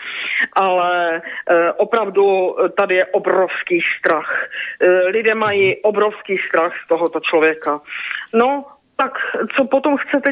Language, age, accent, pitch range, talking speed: Czech, 40-59, native, 205-265 Hz, 115 wpm